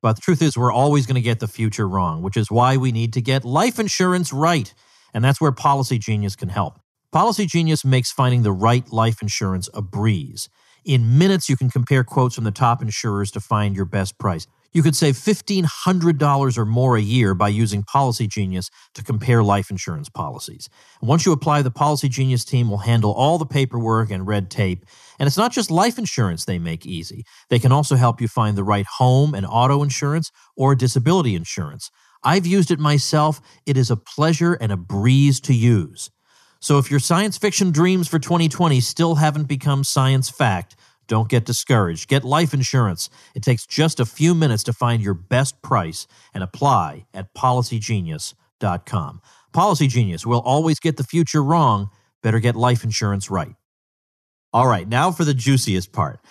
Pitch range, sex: 110-150 Hz, male